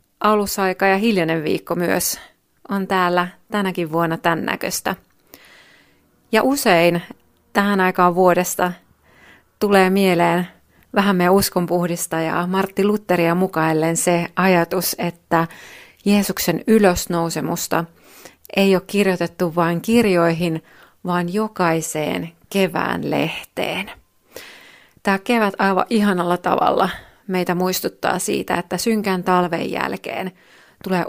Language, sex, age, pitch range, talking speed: Finnish, female, 30-49, 175-200 Hz, 100 wpm